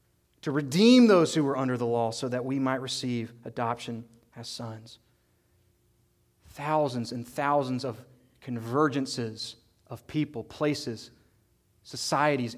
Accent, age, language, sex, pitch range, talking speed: American, 30-49, English, male, 115-175 Hz, 120 wpm